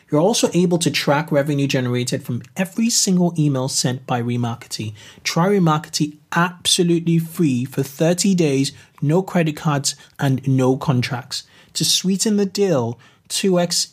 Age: 30-49